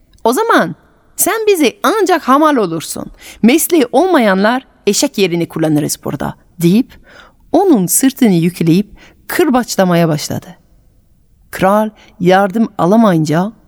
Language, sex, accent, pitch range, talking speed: Turkish, female, native, 165-235 Hz, 95 wpm